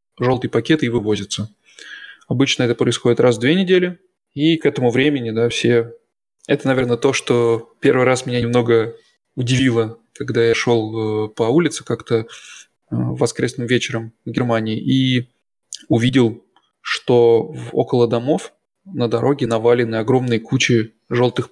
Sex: male